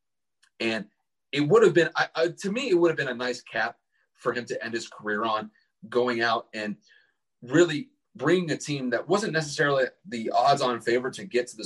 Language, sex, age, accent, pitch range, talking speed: English, male, 30-49, American, 105-130 Hz, 200 wpm